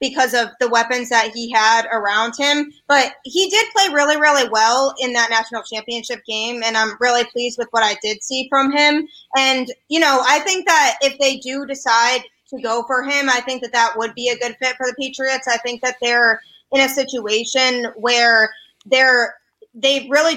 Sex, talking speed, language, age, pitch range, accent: female, 200 wpm, English, 20-39, 230-265 Hz, American